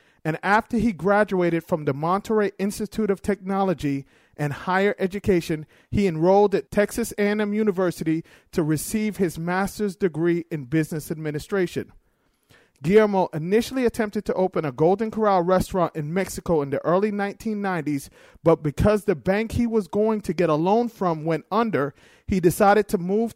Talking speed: 155 wpm